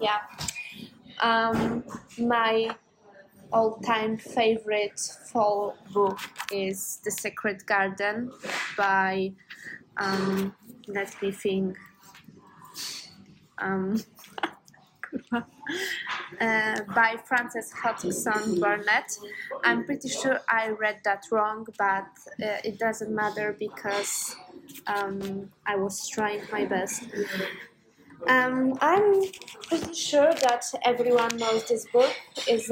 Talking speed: 95 wpm